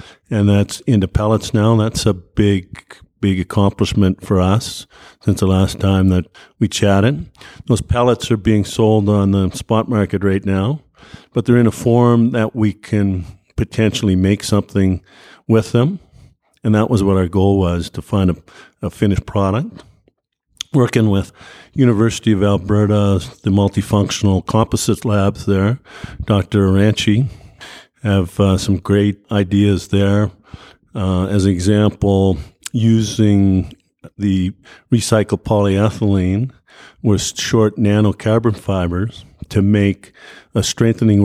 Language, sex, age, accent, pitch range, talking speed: English, male, 50-69, American, 95-110 Hz, 130 wpm